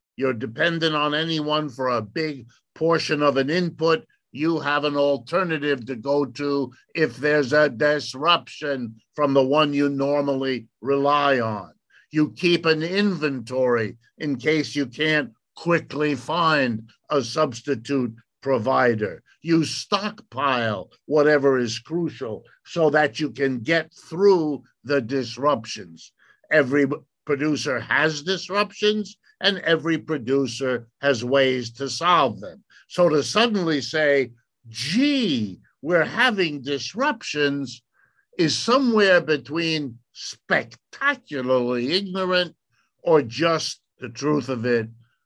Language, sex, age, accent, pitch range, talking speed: English, male, 50-69, American, 130-165 Hz, 115 wpm